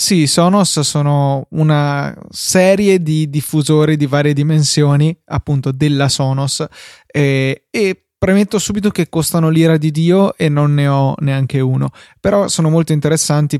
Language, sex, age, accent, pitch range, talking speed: Italian, male, 20-39, native, 135-155 Hz, 135 wpm